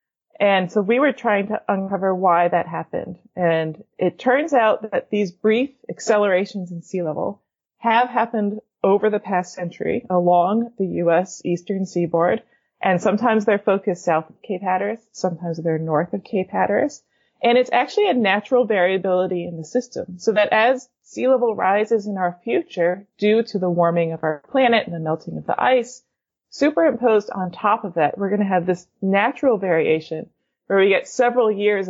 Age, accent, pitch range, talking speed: 30-49, American, 175-220 Hz, 175 wpm